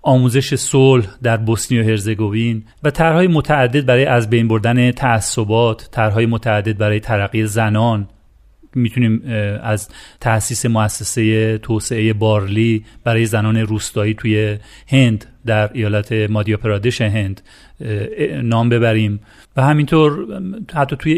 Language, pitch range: Persian, 110-125 Hz